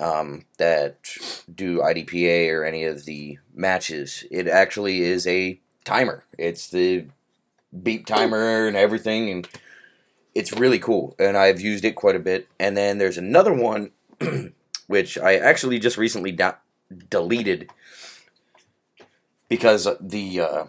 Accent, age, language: American, 20-39, English